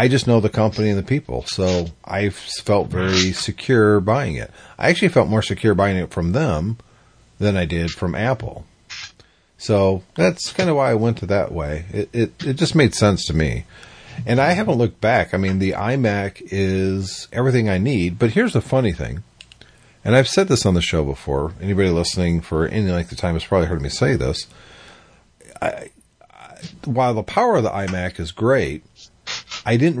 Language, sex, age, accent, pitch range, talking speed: English, male, 40-59, American, 85-110 Hz, 195 wpm